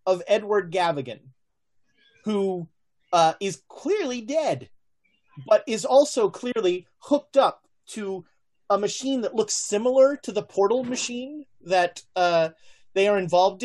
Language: English